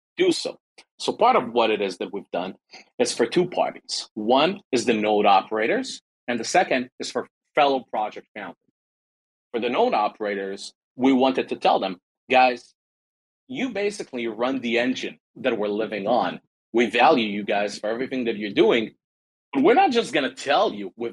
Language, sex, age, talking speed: English, male, 40-59, 180 wpm